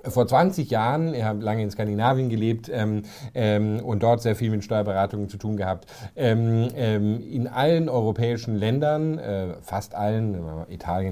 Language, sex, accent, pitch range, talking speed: German, male, German, 105-130 Hz, 155 wpm